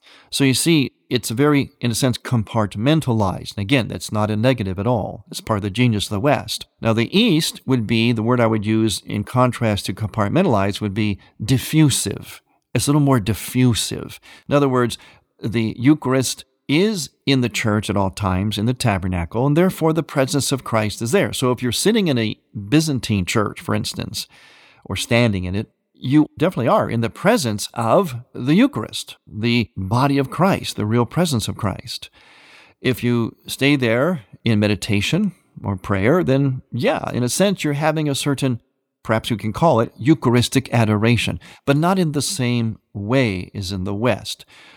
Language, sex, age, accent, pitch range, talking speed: English, male, 50-69, American, 105-135 Hz, 180 wpm